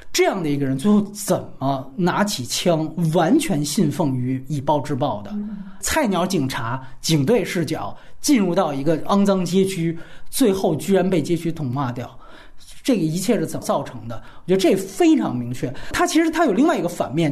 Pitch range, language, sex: 155-240 Hz, Chinese, male